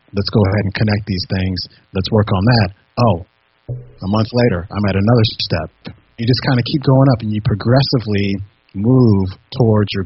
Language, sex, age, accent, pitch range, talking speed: English, male, 30-49, American, 100-130 Hz, 190 wpm